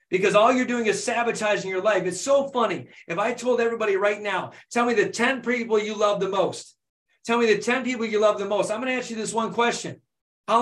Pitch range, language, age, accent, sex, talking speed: 180-225 Hz, English, 40-59, American, male, 245 wpm